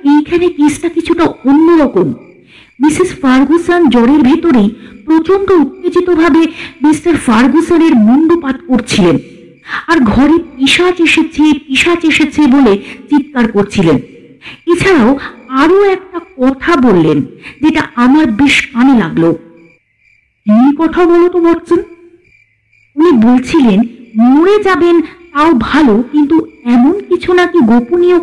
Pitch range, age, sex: 245-330 Hz, 50-69, female